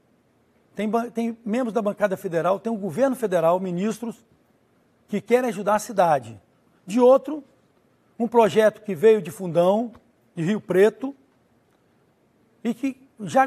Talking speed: 135 wpm